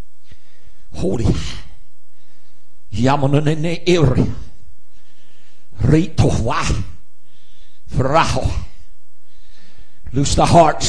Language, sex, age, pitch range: English, male, 60-79, 115-160 Hz